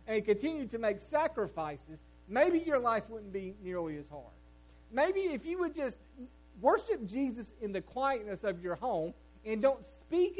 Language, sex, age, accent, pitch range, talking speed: English, male, 40-59, American, 145-230 Hz, 165 wpm